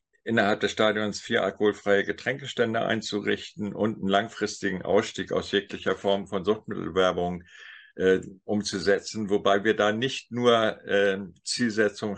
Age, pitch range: 50-69, 100-120 Hz